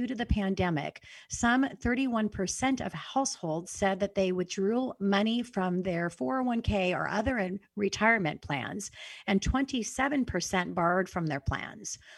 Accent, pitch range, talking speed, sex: American, 180-225 Hz, 125 wpm, female